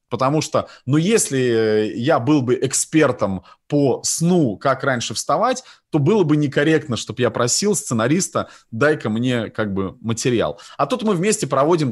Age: 30-49